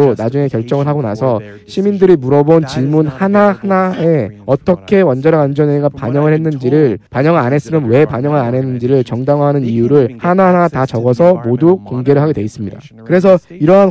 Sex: male